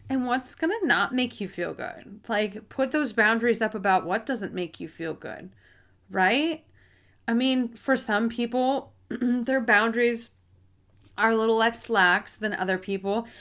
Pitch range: 185-235 Hz